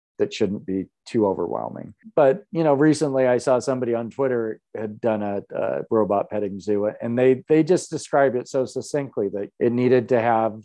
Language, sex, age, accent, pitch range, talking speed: English, male, 40-59, American, 105-130 Hz, 190 wpm